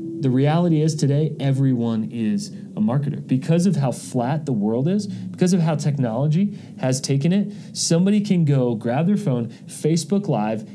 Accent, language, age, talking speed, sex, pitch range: American, English, 30-49, 165 wpm, male, 130-175 Hz